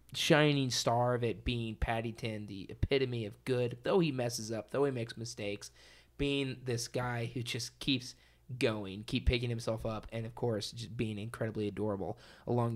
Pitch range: 110-130 Hz